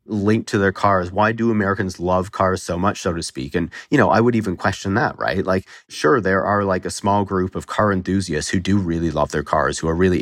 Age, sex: 40-59, male